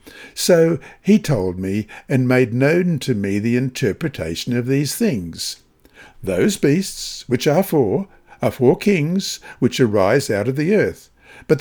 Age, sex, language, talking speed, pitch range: 60-79, male, English, 150 wpm, 120-155 Hz